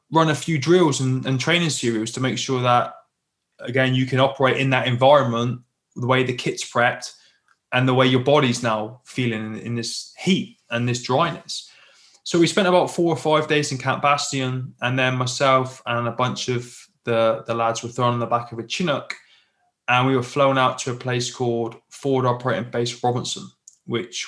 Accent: British